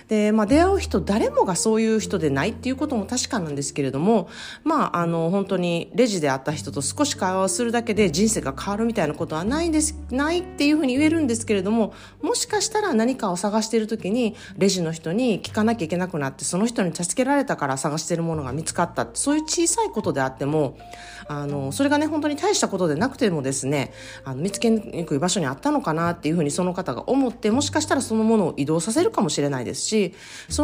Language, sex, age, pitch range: Japanese, female, 40-59, 150-230 Hz